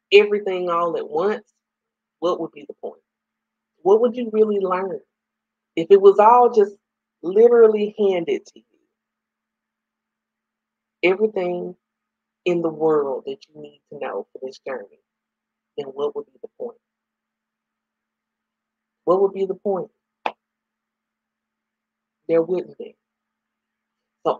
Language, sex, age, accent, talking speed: English, female, 40-59, American, 125 wpm